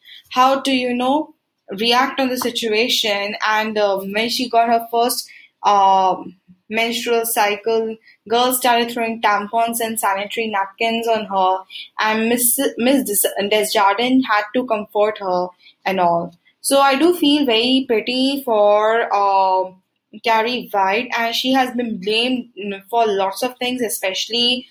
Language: English